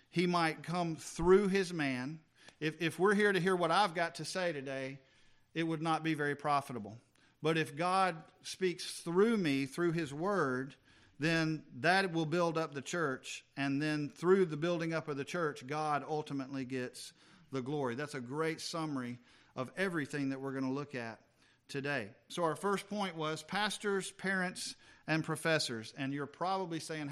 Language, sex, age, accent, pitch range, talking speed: English, male, 50-69, American, 140-170 Hz, 175 wpm